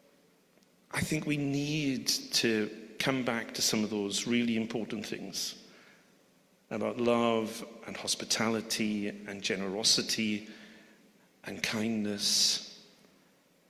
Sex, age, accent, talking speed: male, 40-59, British, 95 wpm